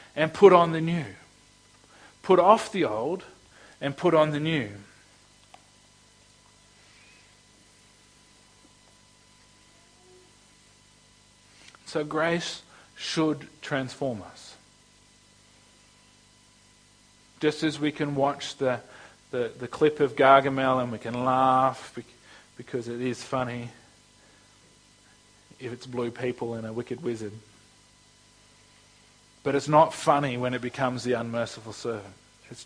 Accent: Australian